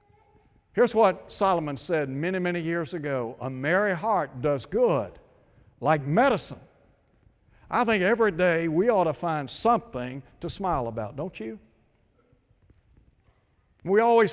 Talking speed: 130 wpm